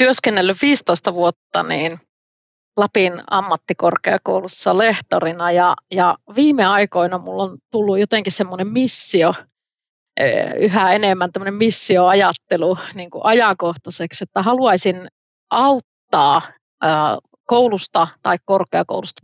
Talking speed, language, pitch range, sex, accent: 90 wpm, Finnish, 180-215 Hz, female, native